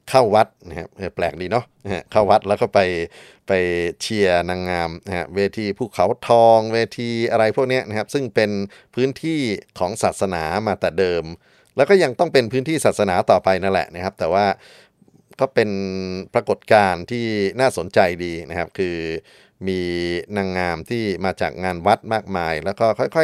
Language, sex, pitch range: Thai, male, 85-110 Hz